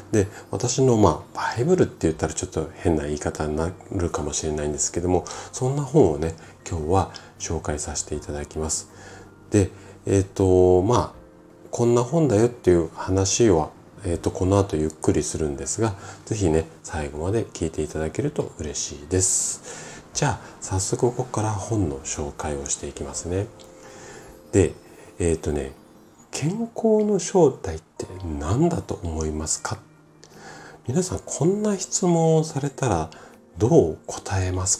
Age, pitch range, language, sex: 40-59, 80-120 Hz, Japanese, male